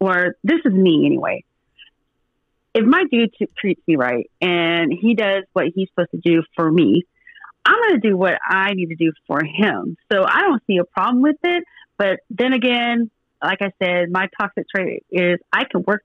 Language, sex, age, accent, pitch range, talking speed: English, female, 30-49, American, 170-205 Hz, 200 wpm